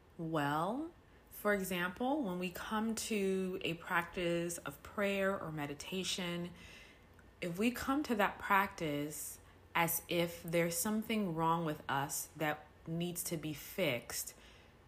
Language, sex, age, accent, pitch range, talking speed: English, female, 20-39, American, 150-195 Hz, 125 wpm